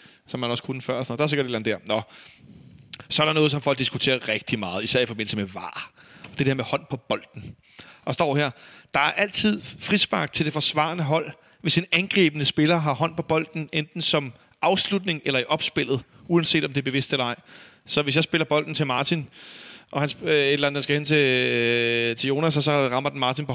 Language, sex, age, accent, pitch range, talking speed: Danish, male, 30-49, native, 125-155 Hz, 220 wpm